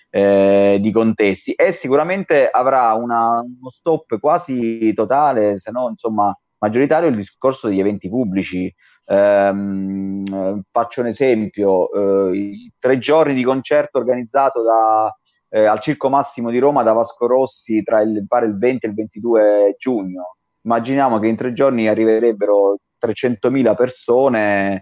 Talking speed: 140 wpm